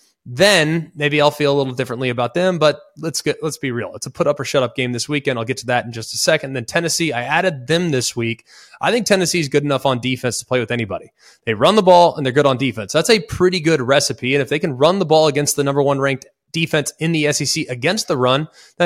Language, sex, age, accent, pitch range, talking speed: English, male, 20-39, American, 135-170 Hz, 275 wpm